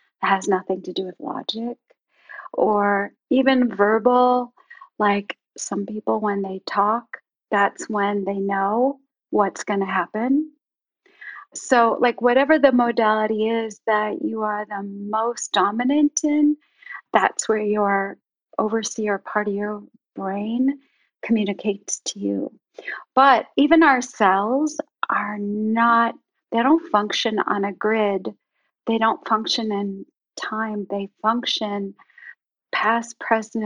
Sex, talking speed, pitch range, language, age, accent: female, 120 wpm, 205-250 Hz, English, 40-59, American